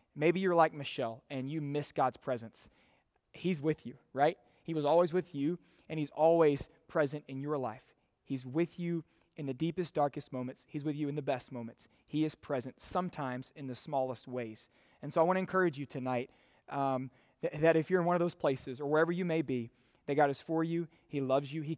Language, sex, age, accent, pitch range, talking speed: English, male, 20-39, American, 130-160 Hz, 220 wpm